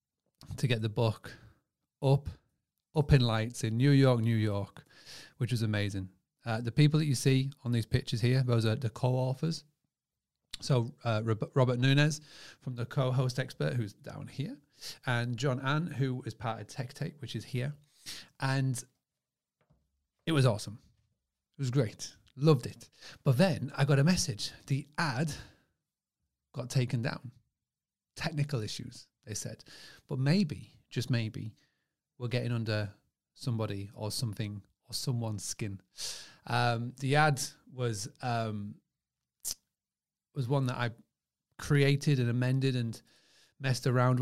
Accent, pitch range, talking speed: British, 115-140 Hz, 140 wpm